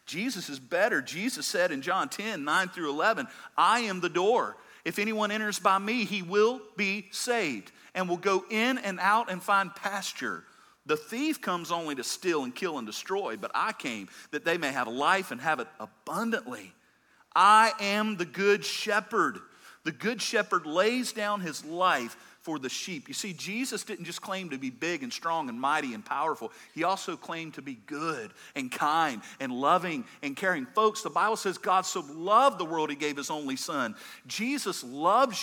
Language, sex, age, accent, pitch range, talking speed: English, male, 40-59, American, 180-255 Hz, 190 wpm